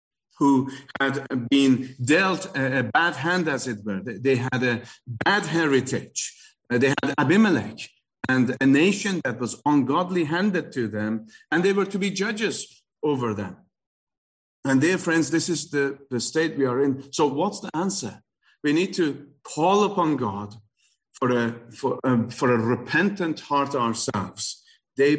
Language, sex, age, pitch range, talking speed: English, male, 50-69, 120-155 Hz, 150 wpm